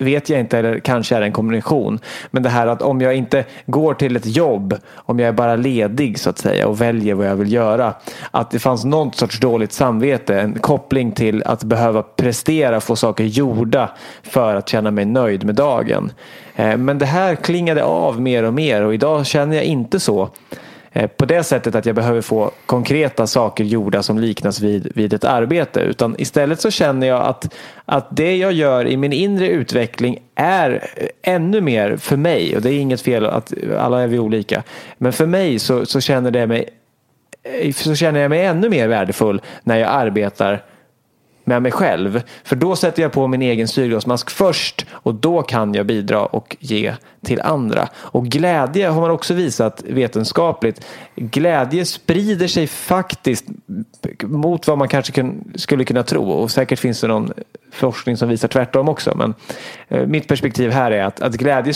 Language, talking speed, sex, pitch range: English, 180 wpm, male, 115-150 Hz